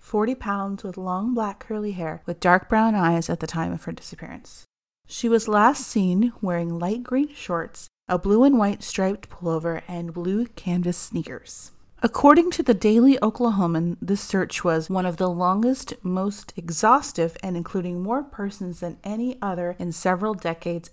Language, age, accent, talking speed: English, 30-49, American, 170 wpm